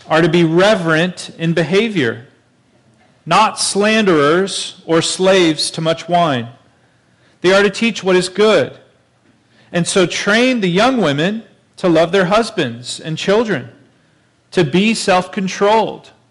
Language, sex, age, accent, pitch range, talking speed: English, male, 40-59, American, 135-185 Hz, 130 wpm